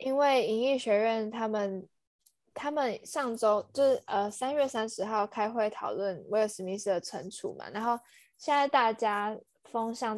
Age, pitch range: 10-29, 200-250 Hz